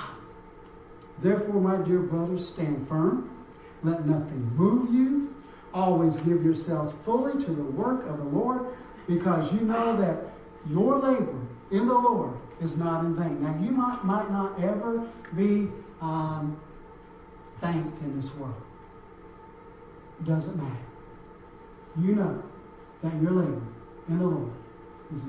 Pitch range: 155-195 Hz